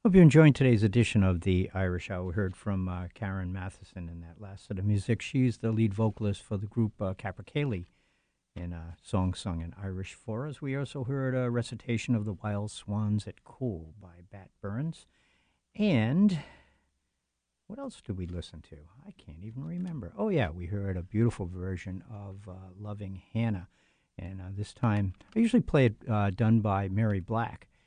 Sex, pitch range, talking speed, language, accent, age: male, 95-125 Hz, 185 wpm, English, American, 60-79